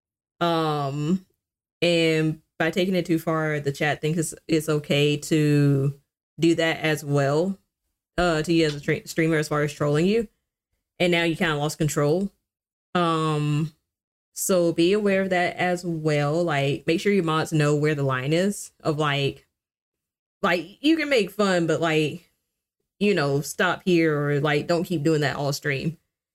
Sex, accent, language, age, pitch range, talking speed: female, American, English, 20-39, 150-180 Hz, 170 wpm